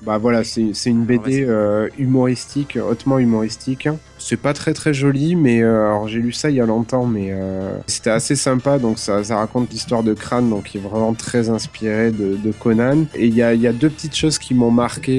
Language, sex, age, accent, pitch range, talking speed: French, male, 20-39, French, 110-130 Hz, 235 wpm